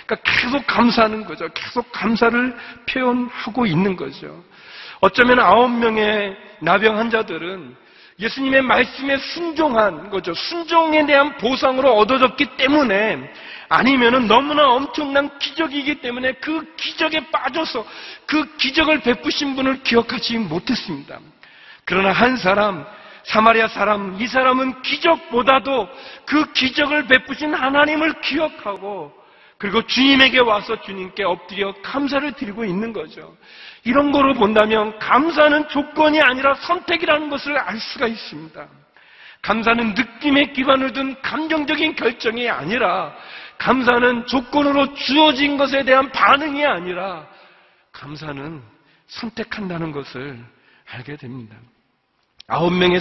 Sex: male